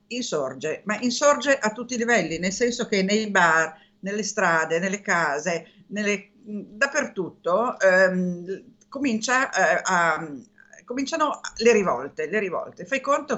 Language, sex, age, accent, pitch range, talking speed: Italian, female, 50-69, native, 180-230 Hz, 130 wpm